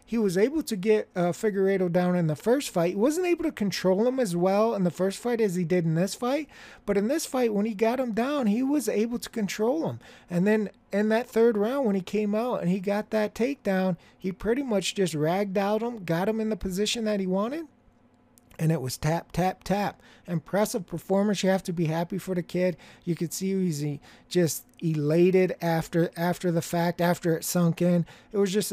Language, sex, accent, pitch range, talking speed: English, male, American, 170-210 Hz, 225 wpm